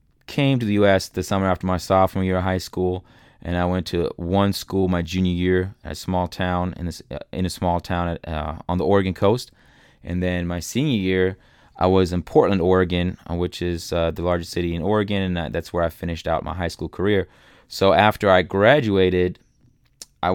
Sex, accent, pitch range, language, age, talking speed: male, American, 90-100 Hz, English, 20-39, 210 wpm